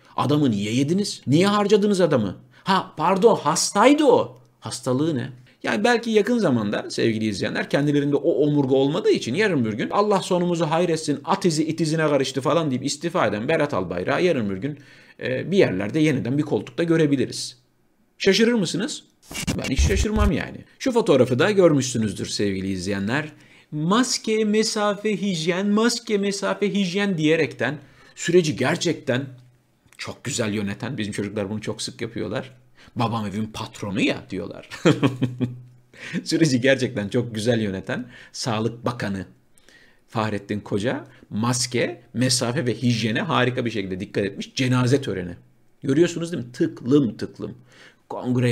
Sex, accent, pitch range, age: male, native, 115-170 Hz, 50-69